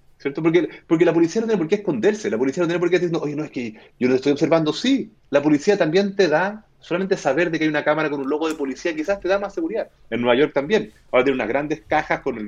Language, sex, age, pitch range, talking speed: Spanish, male, 30-49, 135-190 Hz, 285 wpm